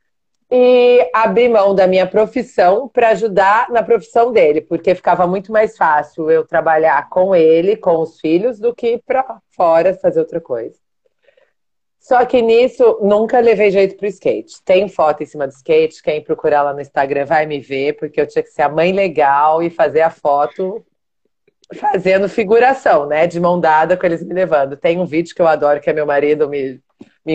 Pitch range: 160-230 Hz